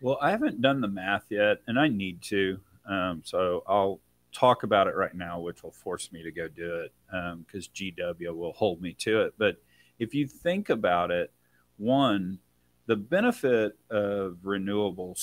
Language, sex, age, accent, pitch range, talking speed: English, male, 40-59, American, 80-105 Hz, 180 wpm